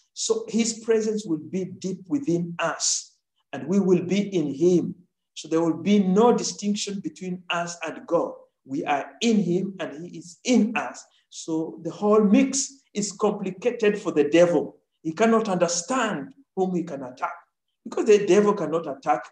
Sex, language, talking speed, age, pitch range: male, English, 170 wpm, 50-69, 170-220 Hz